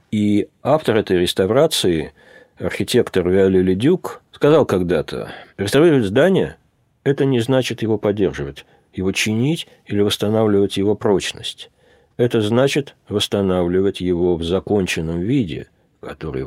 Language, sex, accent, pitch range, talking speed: Russian, male, native, 90-130 Hz, 115 wpm